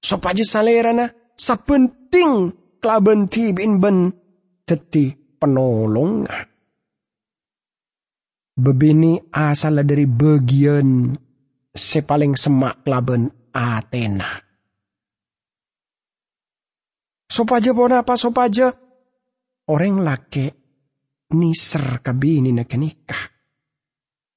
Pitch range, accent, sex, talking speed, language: 135-180 Hz, Indonesian, male, 65 wpm, English